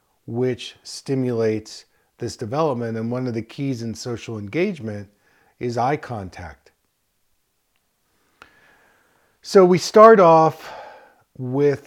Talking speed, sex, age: 100 wpm, male, 50-69